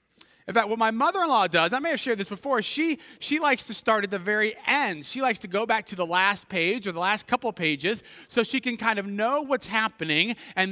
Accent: American